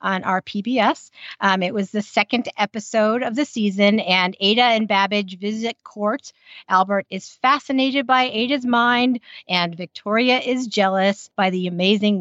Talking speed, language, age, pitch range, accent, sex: 150 wpm, English, 40-59, 190-240 Hz, American, female